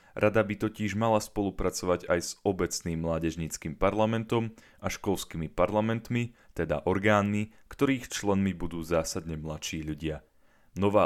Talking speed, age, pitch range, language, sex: 120 wpm, 30-49, 80-110 Hz, Slovak, male